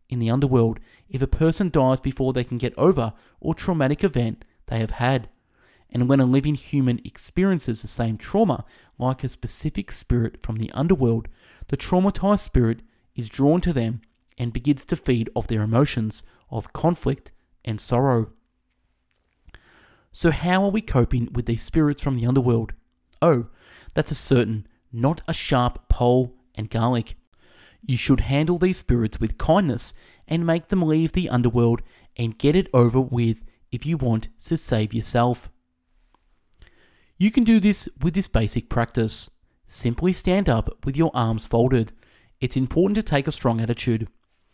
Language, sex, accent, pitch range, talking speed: English, male, Australian, 115-145 Hz, 160 wpm